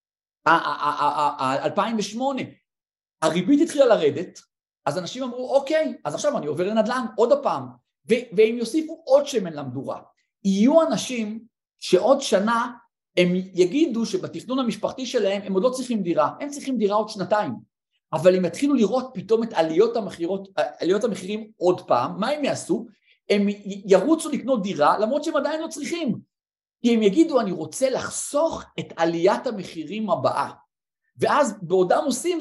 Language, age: Hebrew, 50-69